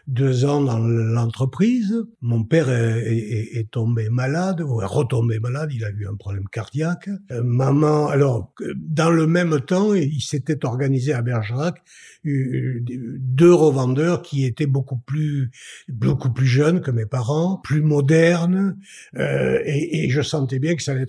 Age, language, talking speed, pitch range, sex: 60-79, French, 155 wpm, 110-145 Hz, male